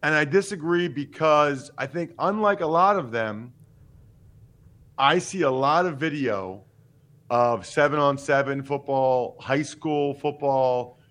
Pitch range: 135-165 Hz